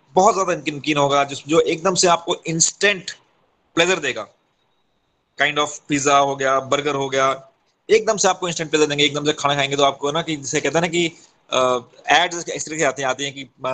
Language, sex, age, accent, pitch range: Hindi, male, 30-49, native, 135-165 Hz